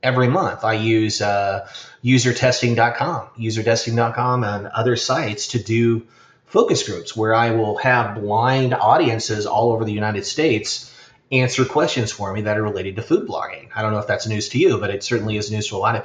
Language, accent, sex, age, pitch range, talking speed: English, American, male, 30-49, 105-125 Hz, 195 wpm